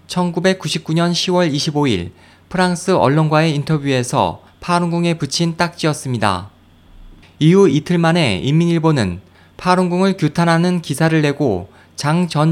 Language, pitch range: Korean, 105-170 Hz